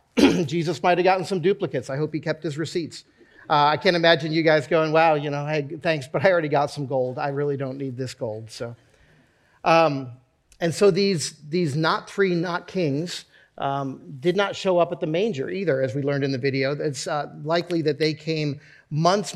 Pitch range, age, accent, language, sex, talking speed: 145-180 Hz, 40-59, American, English, male, 210 wpm